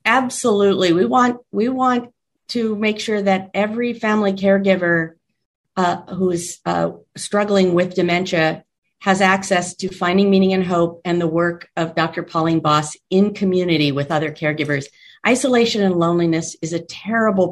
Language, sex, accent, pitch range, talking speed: English, female, American, 160-195 Hz, 145 wpm